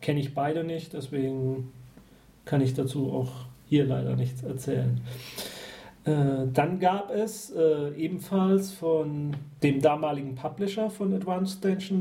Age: 40-59